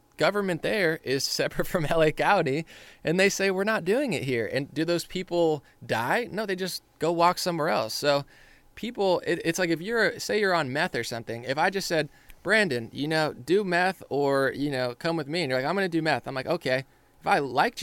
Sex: male